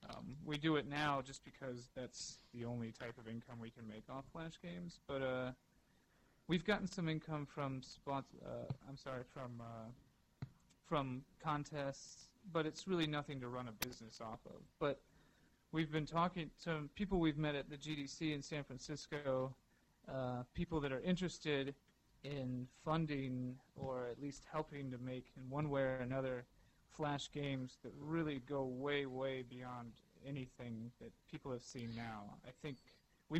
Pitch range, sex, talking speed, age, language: 120-145 Hz, male, 165 wpm, 30-49, English